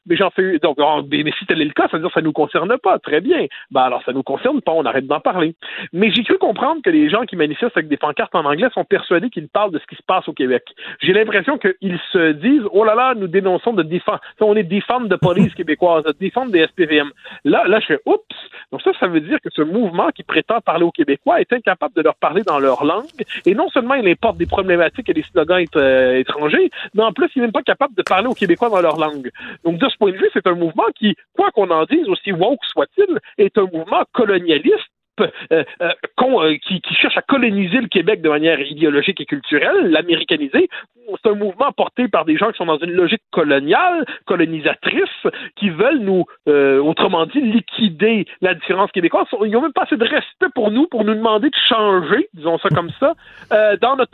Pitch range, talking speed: 170-265 Hz, 240 wpm